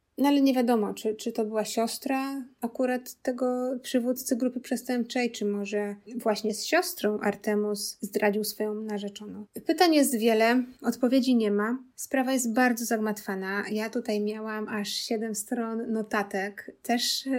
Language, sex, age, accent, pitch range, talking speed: Polish, female, 20-39, native, 215-245 Hz, 140 wpm